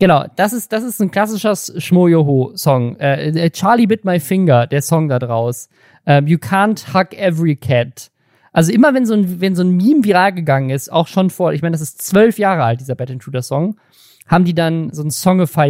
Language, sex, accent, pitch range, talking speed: German, male, German, 150-195 Hz, 210 wpm